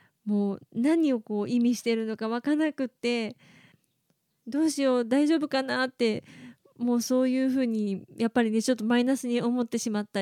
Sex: female